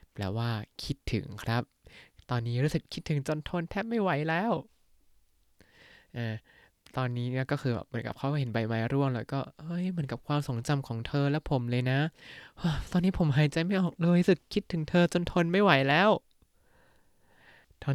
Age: 20-39